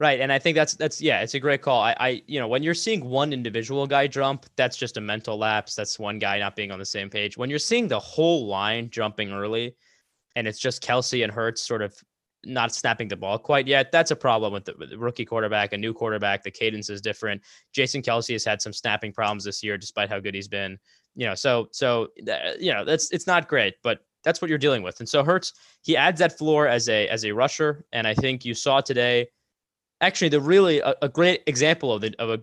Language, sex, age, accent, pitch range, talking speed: English, male, 20-39, American, 115-145 Hz, 245 wpm